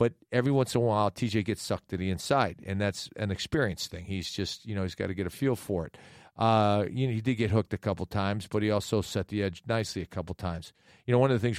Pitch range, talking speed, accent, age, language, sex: 95-120 Hz, 285 wpm, American, 40-59, English, male